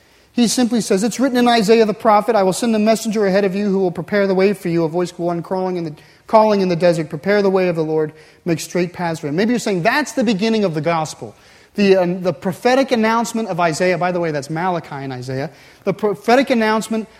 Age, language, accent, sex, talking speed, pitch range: 30-49, English, American, male, 235 wpm, 170-225 Hz